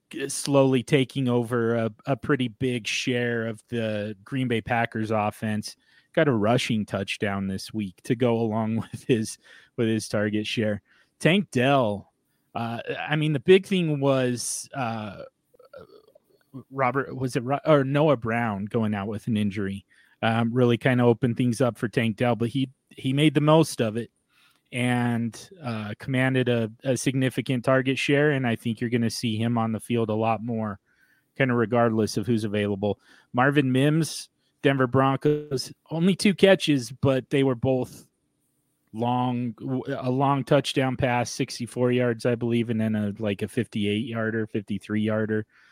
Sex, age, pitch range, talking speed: male, 30-49, 110-135 Hz, 165 wpm